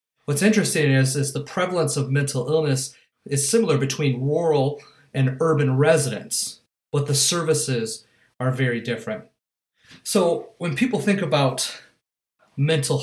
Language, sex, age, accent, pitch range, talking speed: English, male, 30-49, American, 125-150 Hz, 130 wpm